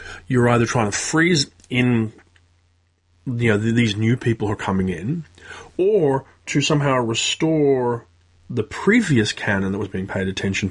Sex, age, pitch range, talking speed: male, 30-49, 95-120 Hz, 150 wpm